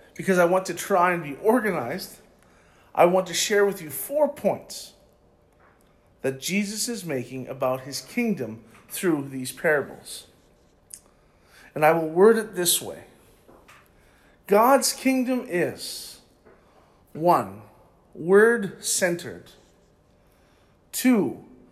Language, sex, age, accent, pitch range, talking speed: English, male, 50-69, American, 155-210 Hz, 110 wpm